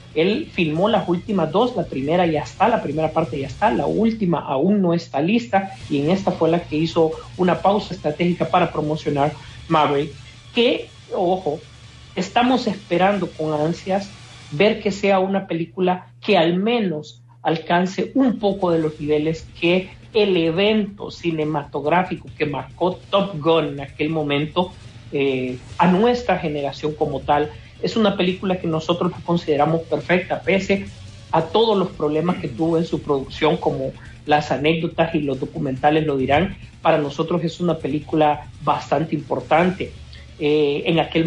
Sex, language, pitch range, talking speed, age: male, Spanish, 145-175 Hz, 155 wpm, 40-59